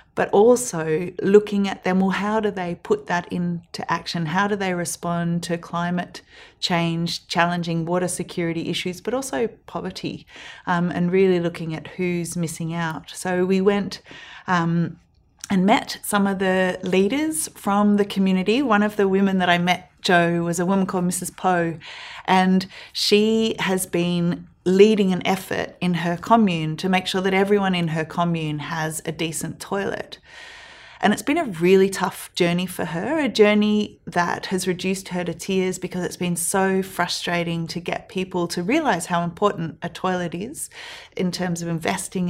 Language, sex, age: English, female, 30-49